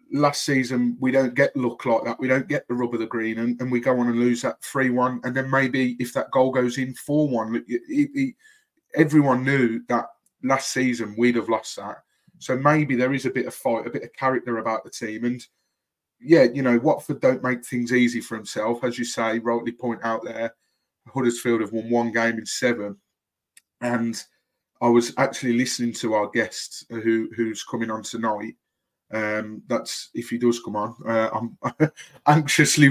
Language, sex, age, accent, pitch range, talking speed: English, male, 30-49, British, 115-130 Hz, 200 wpm